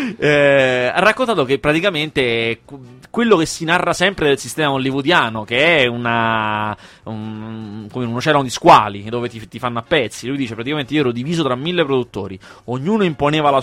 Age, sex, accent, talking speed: 20-39, male, native, 170 wpm